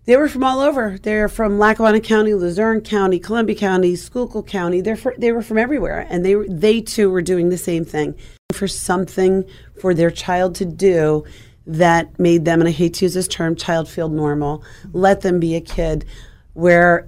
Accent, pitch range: American, 175-210 Hz